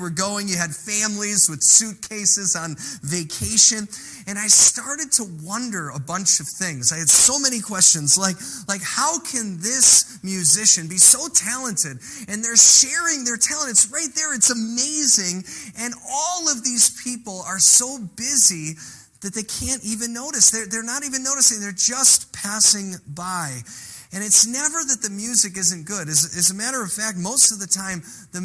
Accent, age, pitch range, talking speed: American, 30-49, 165-225 Hz, 175 wpm